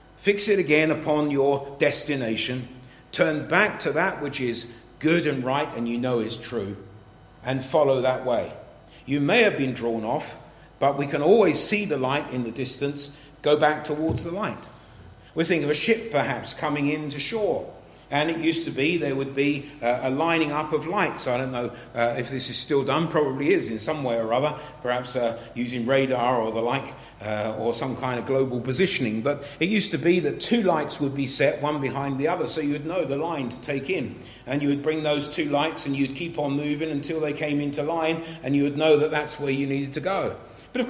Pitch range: 135-200 Hz